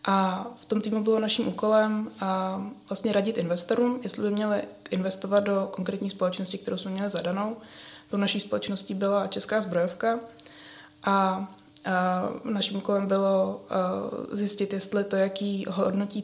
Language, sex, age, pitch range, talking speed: Czech, female, 20-39, 190-210 Hz, 140 wpm